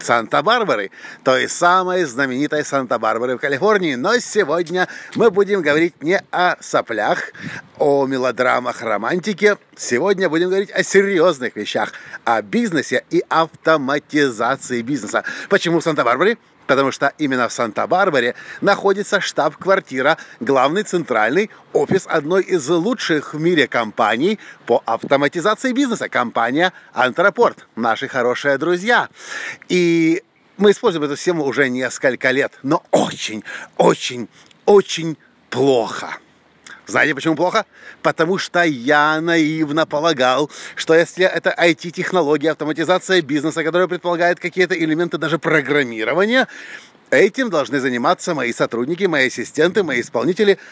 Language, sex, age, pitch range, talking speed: Russian, male, 50-69, 150-195 Hz, 115 wpm